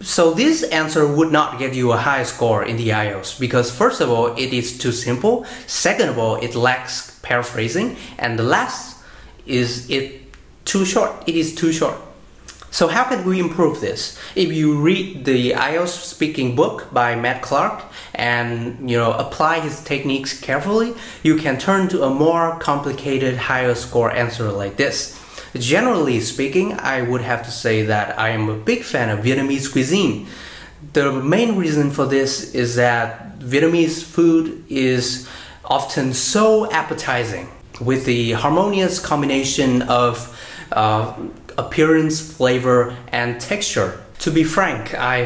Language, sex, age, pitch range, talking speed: Vietnamese, male, 20-39, 120-160 Hz, 155 wpm